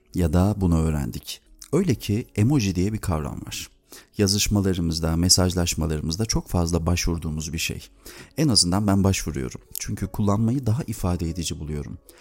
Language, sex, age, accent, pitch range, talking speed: Turkish, male, 40-59, native, 85-105 Hz, 140 wpm